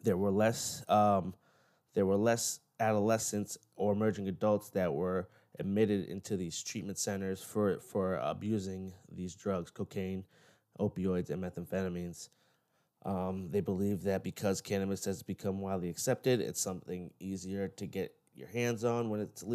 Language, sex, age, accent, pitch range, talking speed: English, male, 20-39, American, 95-105 Hz, 145 wpm